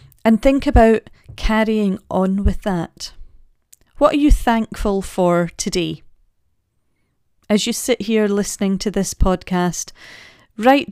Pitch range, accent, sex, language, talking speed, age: 180-230 Hz, British, female, English, 120 wpm, 40-59